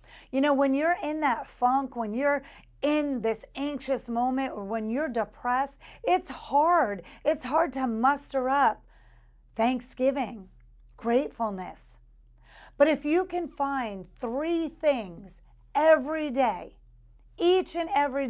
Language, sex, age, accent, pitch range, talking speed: English, female, 40-59, American, 215-285 Hz, 125 wpm